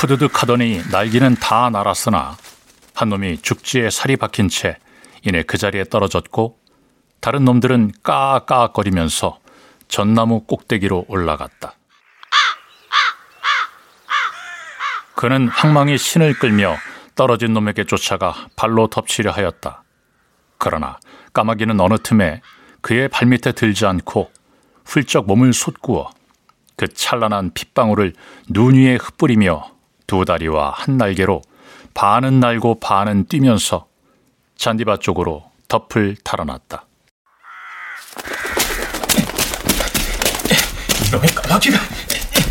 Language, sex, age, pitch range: Korean, male, 40-59, 100-125 Hz